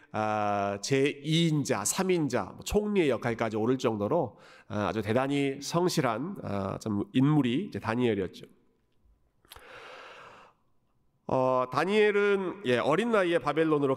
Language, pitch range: Korean, 120-175 Hz